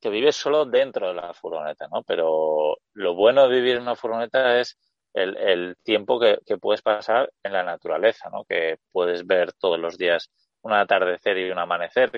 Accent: Spanish